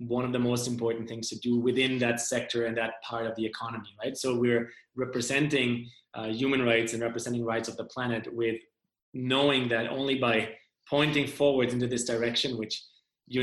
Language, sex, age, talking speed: English, male, 20-39, 190 wpm